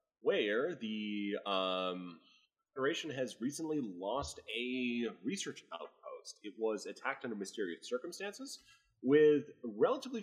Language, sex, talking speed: English, male, 105 wpm